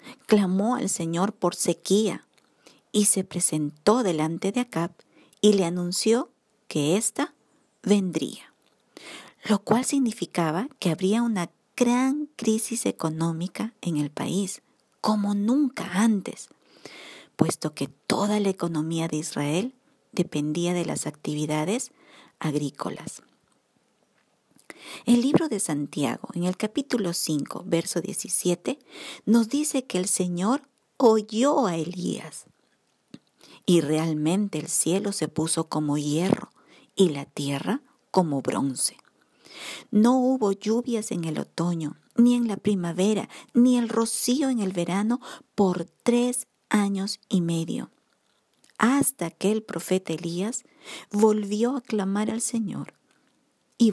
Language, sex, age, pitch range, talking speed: Spanish, female, 50-69, 170-235 Hz, 120 wpm